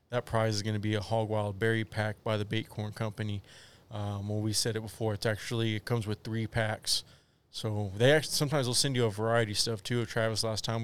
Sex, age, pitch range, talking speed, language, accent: male, 20-39, 110-120 Hz, 250 wpm, English, American